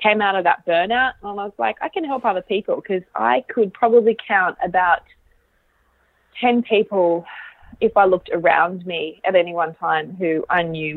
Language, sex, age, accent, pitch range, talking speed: English, female, 20-39, Australian, 170-210 Hz, 185 wpm